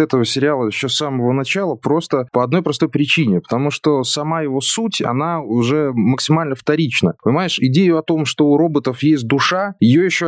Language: Russian